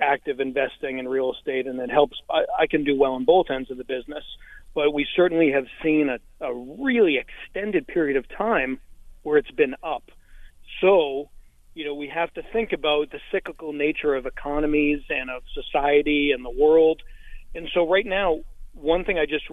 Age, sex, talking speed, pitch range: 40-59, male, 185 wpm, 140-180 Hz